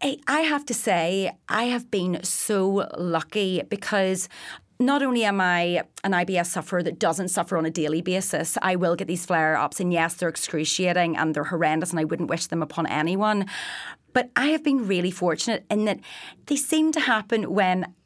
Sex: female